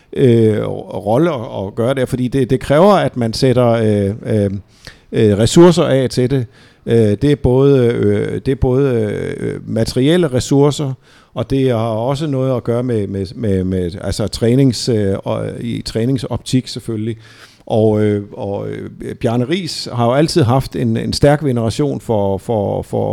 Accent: native